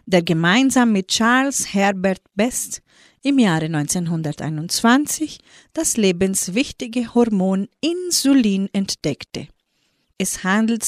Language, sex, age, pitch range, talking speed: German, female, 30-49, 185-240 Hz, 90 wpm